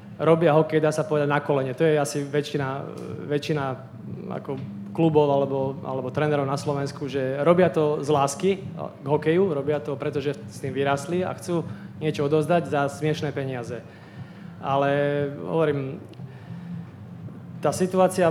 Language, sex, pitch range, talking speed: Slovak, male, 140-155 Hz, 135 wpm